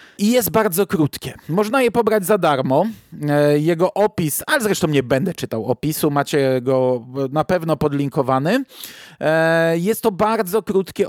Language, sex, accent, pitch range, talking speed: Polish, male, native, 145-190 Hz, 140 wpm